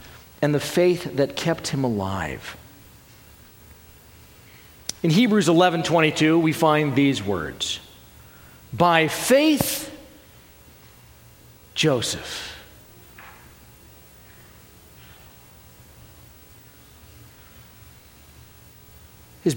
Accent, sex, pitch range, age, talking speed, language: American, male, 115-185 Hz, 50-69, 55 wpm, English